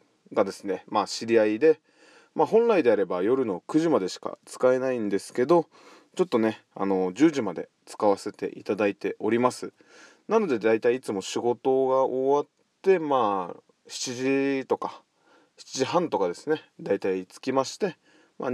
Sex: male